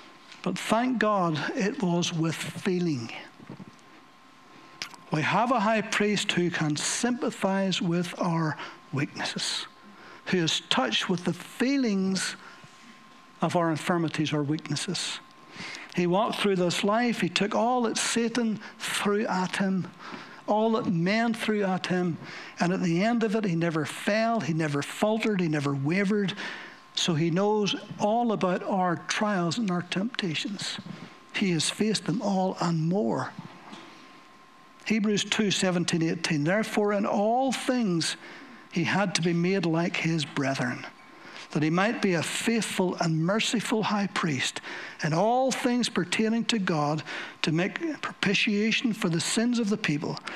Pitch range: 170-220 Hz